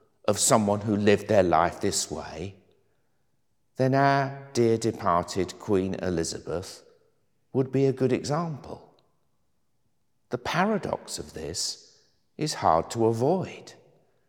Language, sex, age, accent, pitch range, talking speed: English, male, 50-69, British, 110-150 Hz, 115 wpm